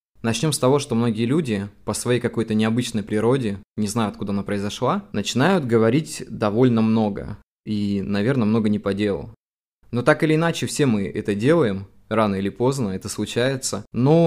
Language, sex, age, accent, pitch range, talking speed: Russian, male, 20-39, native, 110-135 Hz, 170 wpm